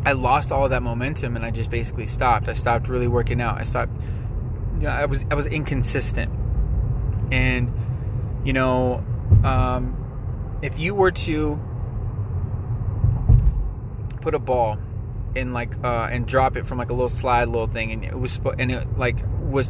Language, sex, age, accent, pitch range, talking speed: English, male, 20-39, American, 115-130 Hz, 175 wpm